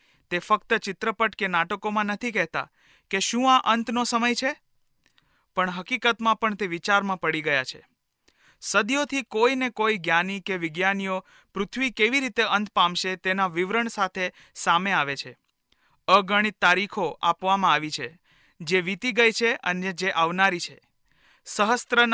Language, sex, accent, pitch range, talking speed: Hindi, male, native, 185-225 Hz, 120 wpm